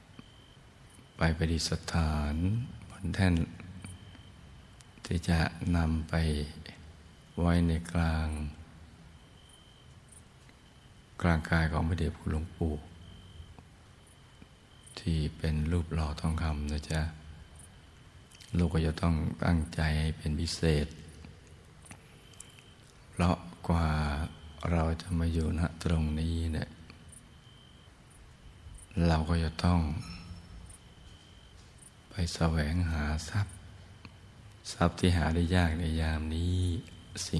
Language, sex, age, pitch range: Thai, male, 60-79, 80-90 Hz